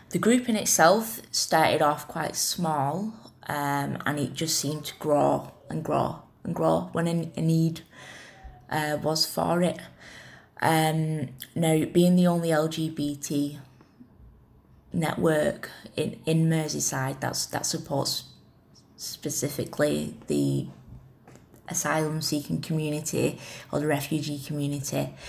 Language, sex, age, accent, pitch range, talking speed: English, female, 20-39, British, 140-170 Hz, 115 wpm